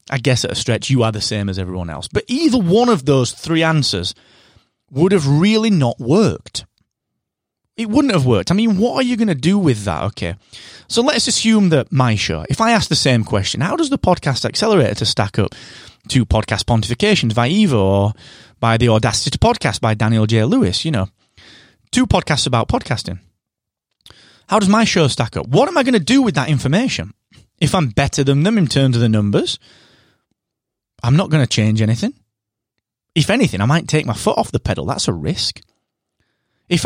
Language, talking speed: English, 205 wpm